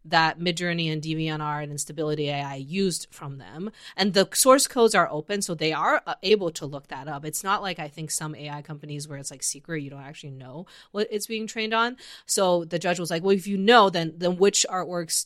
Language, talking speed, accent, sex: English, 230 wpm, American, female